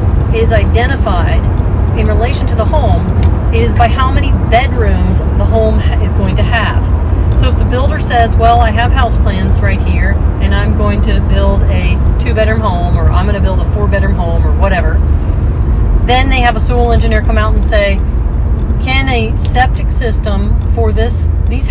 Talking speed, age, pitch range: 180 wpm, 40-59, 80-100 Hz